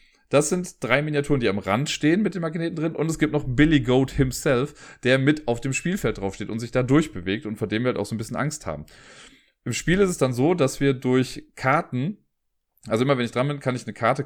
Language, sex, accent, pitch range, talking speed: German, male, German, 115-145 Hz, 255 wpm